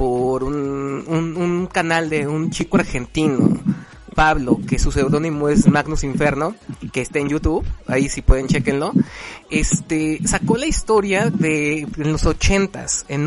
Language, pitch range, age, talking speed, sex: Spanish, 145-185 Hz, 30-49, 155 wpm, male